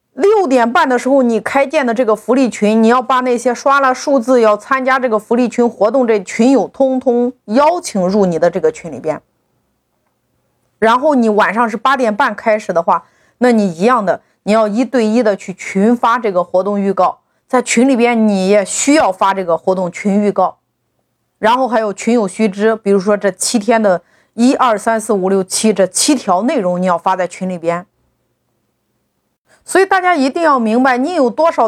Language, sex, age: Chinese, female, 30-49